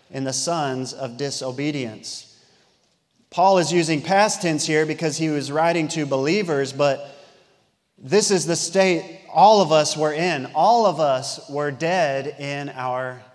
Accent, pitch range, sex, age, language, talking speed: American, 135-165 Hz, male, 30-49, English, 155 wpm